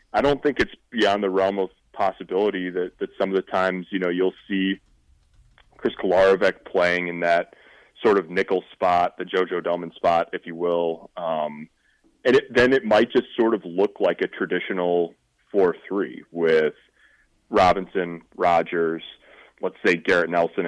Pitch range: 85-95 Hz